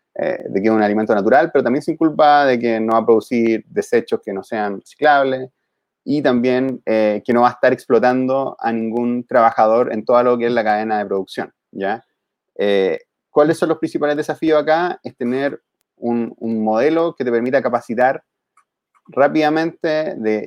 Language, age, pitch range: English, 30-49, 115-150 Hz